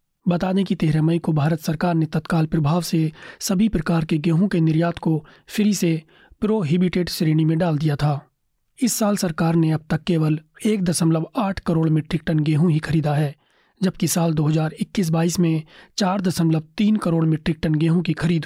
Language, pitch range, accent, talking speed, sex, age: Hindi, 155-180 Hz, native, 185 wpm, male, 30-49